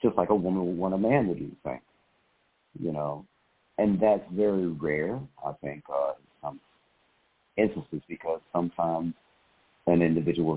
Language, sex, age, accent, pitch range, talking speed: English, male, 60-79, American, 80-100 Hz, 155 wpm